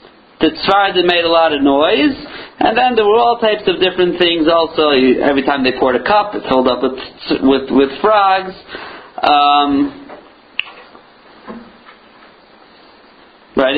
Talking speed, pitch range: 145 wpm, 140-210 Hz